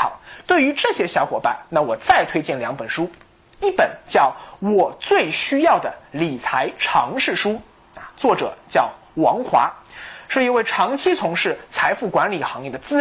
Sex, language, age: male, Chinese, 20-39